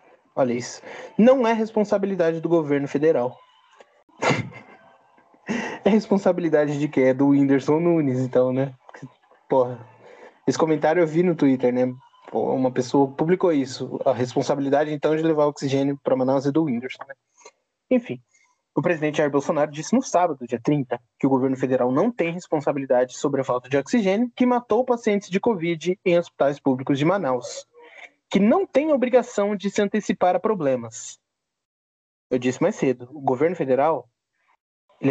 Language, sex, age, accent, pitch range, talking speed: Portuguese, male, 20-39, Brazilian, 135-210 Hz, 160 wpm